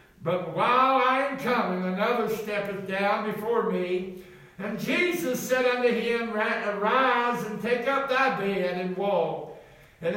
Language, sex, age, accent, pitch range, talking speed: English, male, 60-79, American, 195-240 Hz, 140 wpm